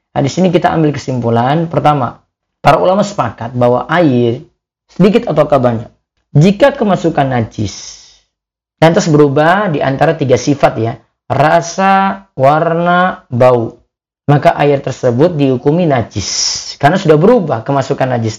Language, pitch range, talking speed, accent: Indonesian, 130-185 Hz, 120 wpm, native